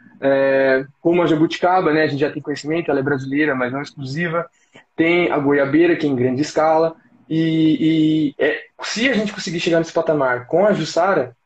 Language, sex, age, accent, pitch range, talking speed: Portuguese, male, 20-39, Brazilian, 155-190 Hz, 195 wpm